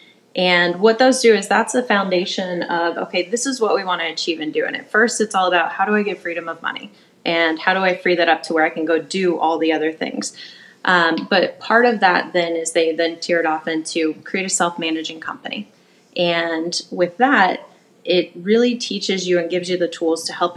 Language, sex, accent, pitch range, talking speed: English, female, American, 170-205 Hz, 235 wpm